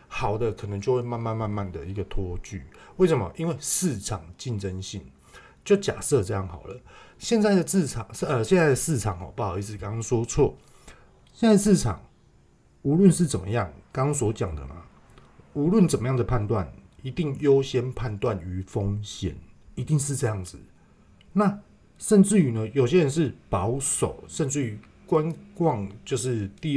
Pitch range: 95-135 Hz